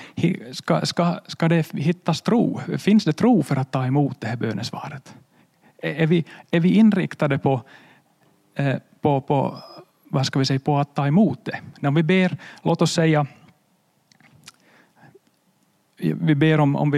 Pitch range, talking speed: 135-165 Hz, 115 wpm